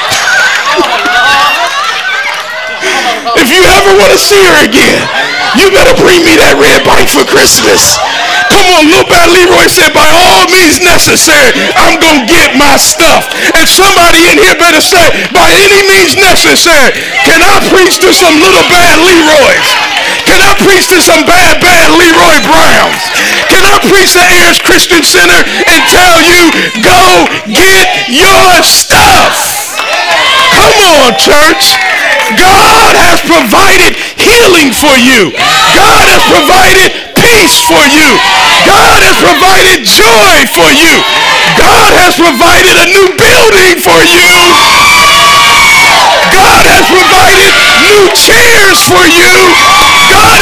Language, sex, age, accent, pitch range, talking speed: English, male, 50-69, American, 340-390 Hz, 130 wpm